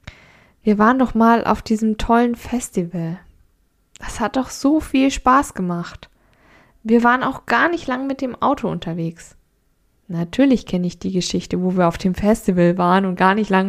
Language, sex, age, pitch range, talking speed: German, female, 10-29, 190-230 Hz, 175 wpm